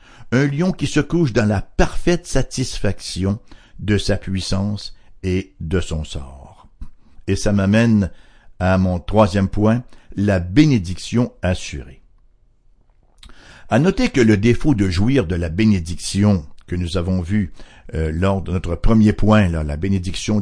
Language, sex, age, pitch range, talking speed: English, male, 60-79, 95-130 Hz, 140 wpm